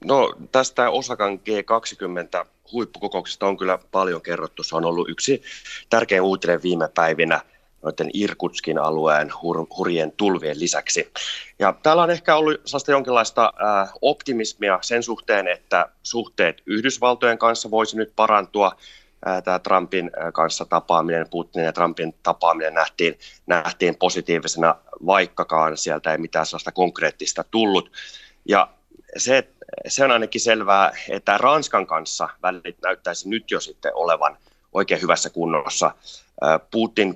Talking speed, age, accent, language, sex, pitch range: 120 wpm, 30-49, native, Finnish, male, 80-110 Hz